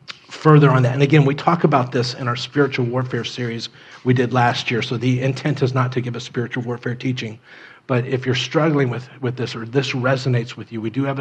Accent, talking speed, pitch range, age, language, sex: American, 235 wpm, 120-140 Hz, 40-59, English, male